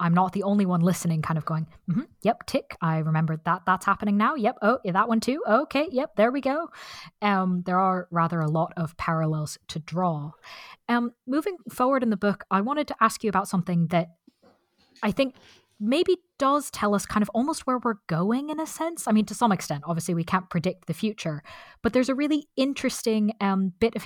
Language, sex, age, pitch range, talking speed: English, female, 20-39, 170-230 Hz, 215 wpm